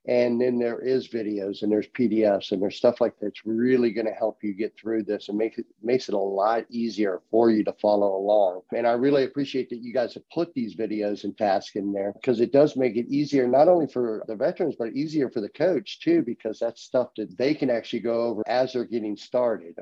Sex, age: male, 50-69